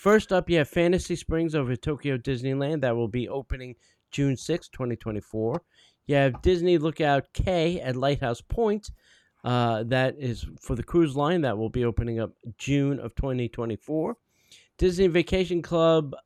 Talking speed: 160 wpm